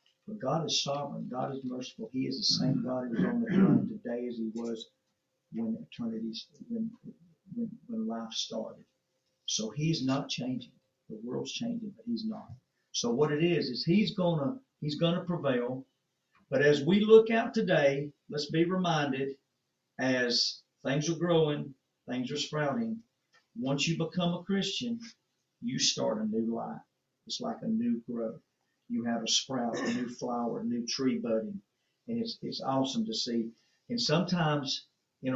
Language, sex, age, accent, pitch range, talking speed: English, male, 50-69, American, 125-195 Hz, 170 wpm